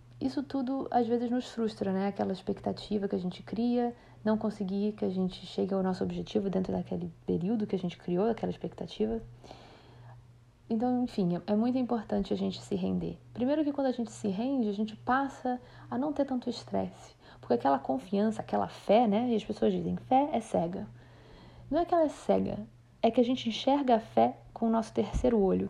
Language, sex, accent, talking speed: Portuguese, female, Brazilian, 200 wpm